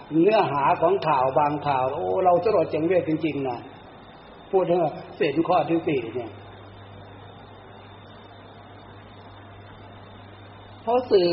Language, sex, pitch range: Thai, male, 100-165 Hz